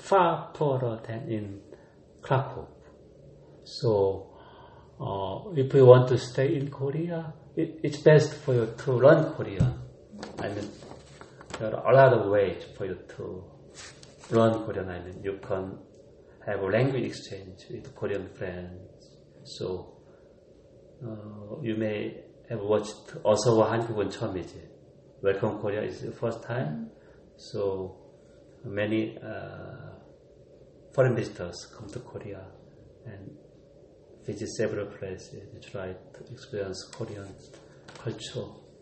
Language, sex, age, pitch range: Korean, male, 40-59, 100-140 Hz